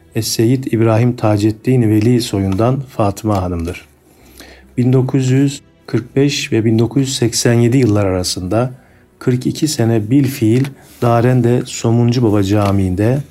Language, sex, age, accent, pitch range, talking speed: Turkish, male, 50-69, native, 105-125 Hz, 90 wpm